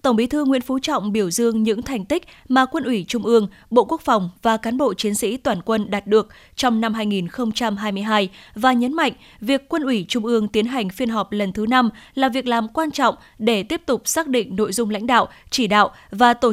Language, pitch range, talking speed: Vietnamese, 215-255 Hz, 230 wpm